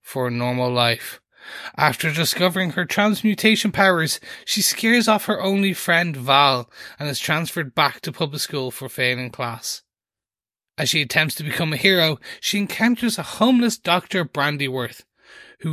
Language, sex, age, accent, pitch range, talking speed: English, male, 30-49, Irish, 145-180 Hz, 155 wpm